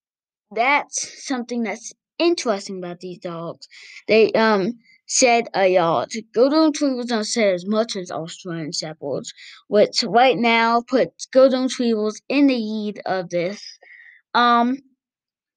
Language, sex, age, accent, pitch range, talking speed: English, female, 20-39, American, 200-275 Hz, 125 wpm